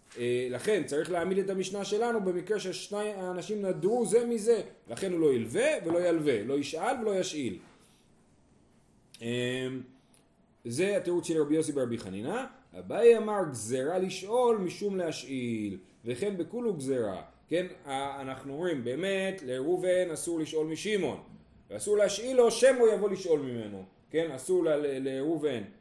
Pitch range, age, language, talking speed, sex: 130-190 Hz, 30-49, Hebrew, 130 wpm, male